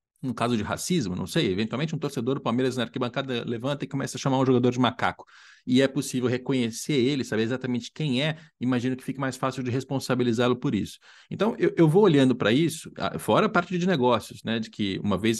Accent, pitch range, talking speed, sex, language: Brazilian, 125-170 Hz, 220 wpm, male, Portuguese